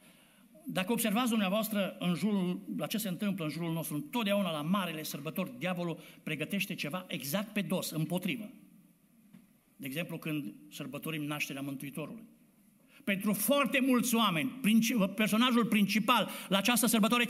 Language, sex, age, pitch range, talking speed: Romanian, male, 60-79, 195-250 Hz, 135 wpm